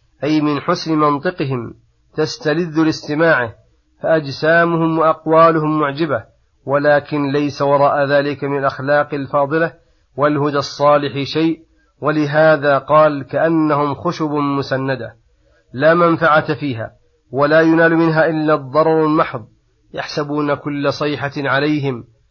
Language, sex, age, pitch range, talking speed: Arabic, male, 40-59, 140-155 Hz, 100 wpm